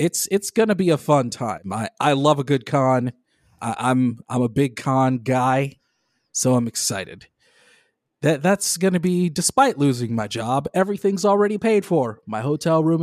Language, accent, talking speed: English, American, 185 wpm